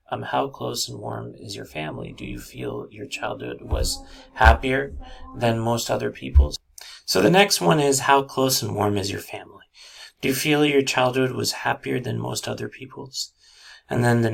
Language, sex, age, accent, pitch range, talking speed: English, male, 30-49, American, 80-135 Hz, 190 wpm